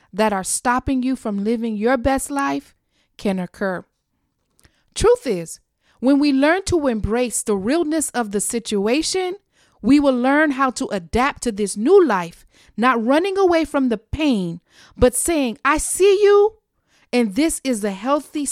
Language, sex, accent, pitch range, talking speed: English, female, American, 210-300 Hz, 160 wpm